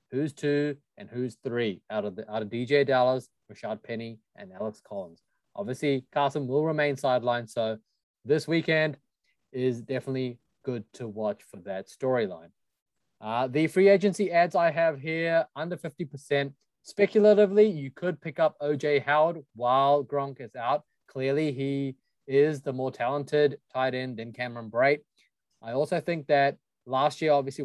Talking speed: 155 wpm